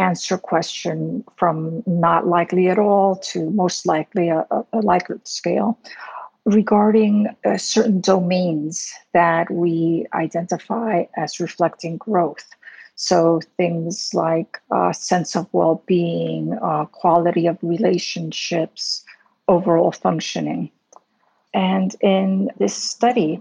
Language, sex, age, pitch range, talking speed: English, female, 50-69, 170-195 Hz, 105 wpm